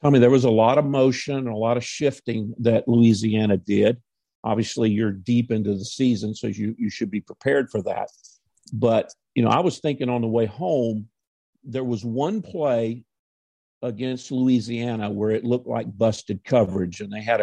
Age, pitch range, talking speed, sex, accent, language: 50-69, 110-130 Hz, 190 wpm, male, American, English